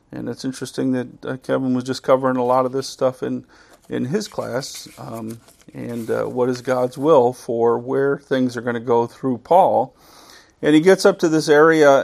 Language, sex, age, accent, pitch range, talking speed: English, male, 50-69, American, 120-140 Hz, 200 wpm